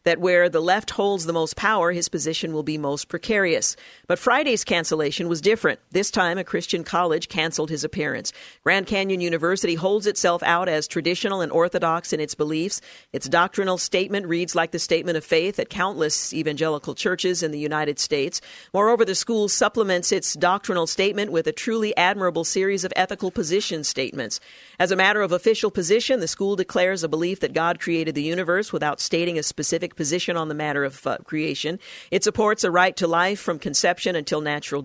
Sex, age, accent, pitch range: female, 50-69, American, 165-195 Hz